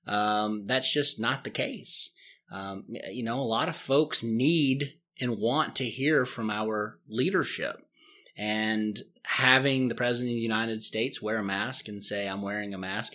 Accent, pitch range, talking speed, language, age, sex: American, 110-145 Hz, 175 wpm, English, 30-49, male